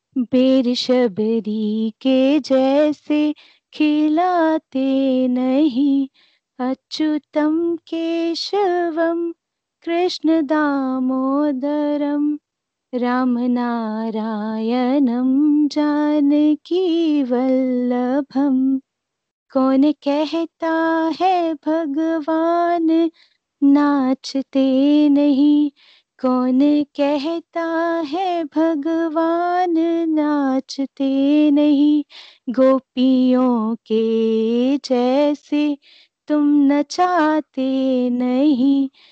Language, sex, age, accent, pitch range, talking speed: Hindi, female, 30-49, native, 260-320 Hz, 50 wpm